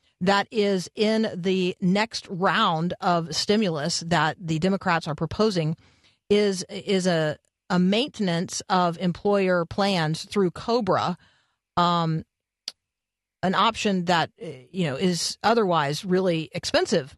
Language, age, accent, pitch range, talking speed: English, 40-59, American, 165-200 Hz, 115 wpm